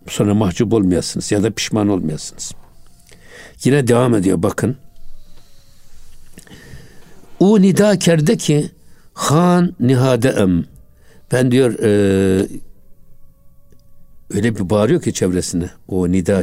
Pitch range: 90-130 Hz